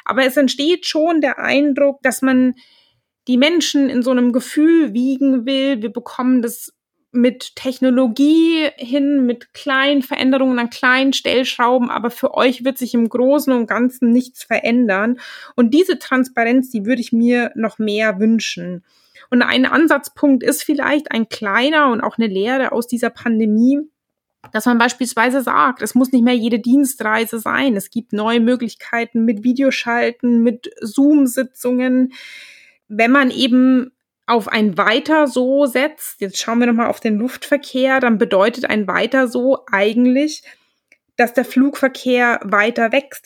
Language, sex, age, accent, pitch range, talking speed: German, female, 20-39, German, 230-270 Hz, 145 wpm